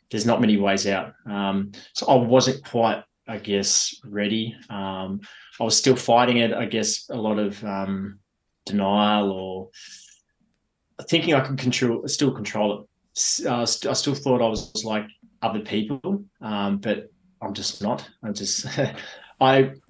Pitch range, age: 105-125 Hz, 30-49